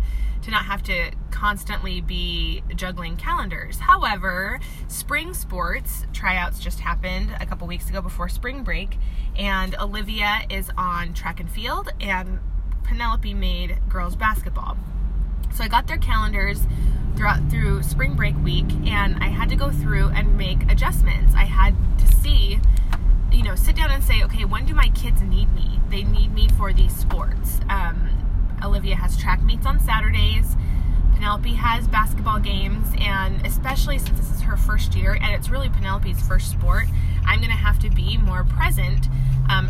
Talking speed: 165 wpm